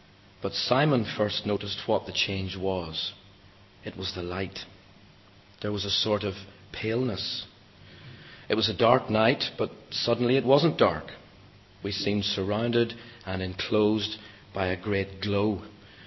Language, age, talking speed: English, 40-59, 140 wpm